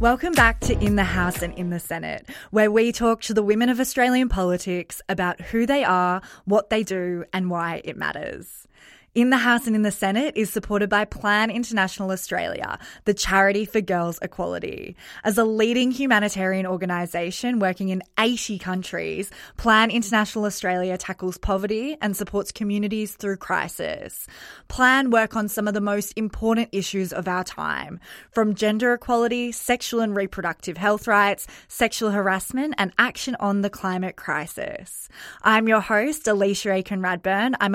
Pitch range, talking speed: 185-225 Hz, 160 wpm